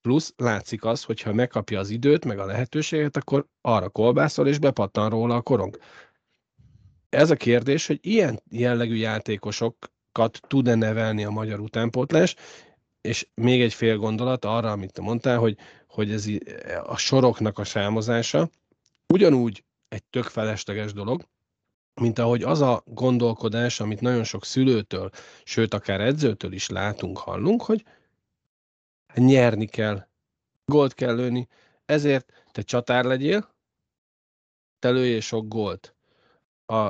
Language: Hungarian